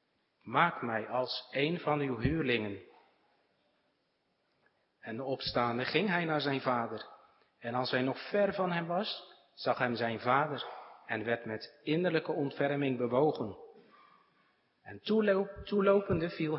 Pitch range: 120-155 Hz